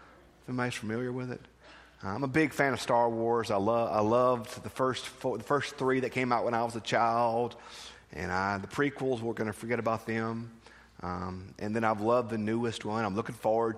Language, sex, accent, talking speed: English, male, American, 220 wpm